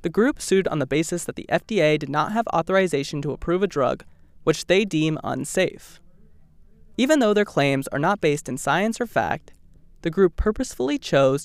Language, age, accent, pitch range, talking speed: English, 20-39, American, 135-185 Hz, 190 wpm